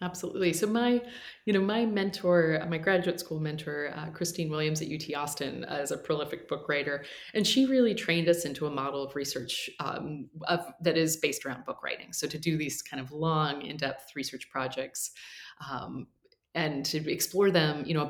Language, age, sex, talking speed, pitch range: English, 30-49, female, 195 wpm, 145-185 Hz